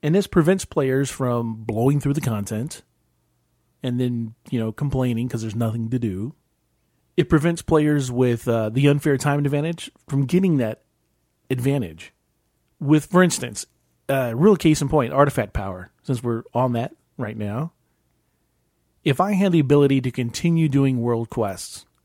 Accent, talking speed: American, 160 wpm